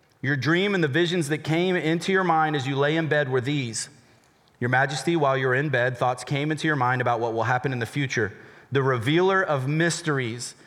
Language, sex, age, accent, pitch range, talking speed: English, male, 30-49, American, 130-165 Hz, 220 wpm